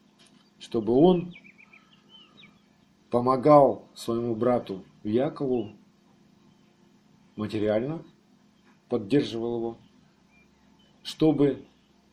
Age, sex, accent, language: 50-69, male, native, Russian